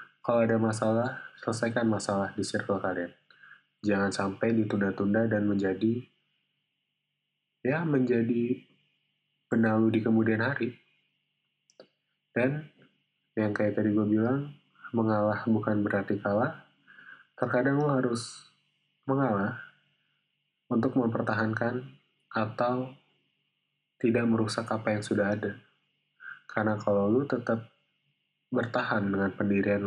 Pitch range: 100-115 Hz